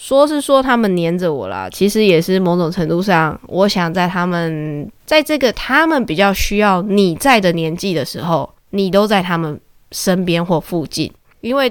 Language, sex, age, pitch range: Chinese, female, 20-39, 170-220 Hz